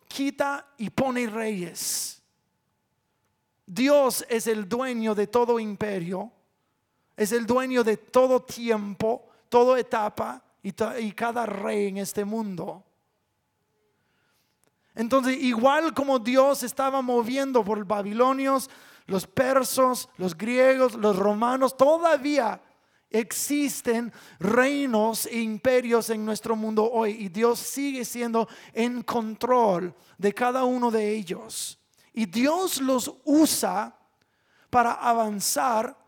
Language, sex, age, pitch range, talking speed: English, male, 40-59, 210-255 Hz, 110 wpm